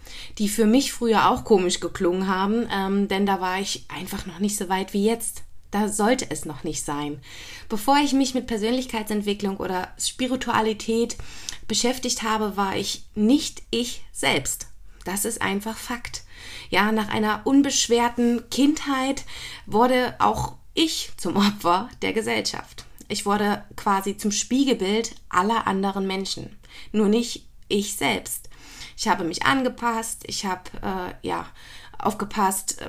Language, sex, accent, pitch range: German, female, German, 195-235 Hz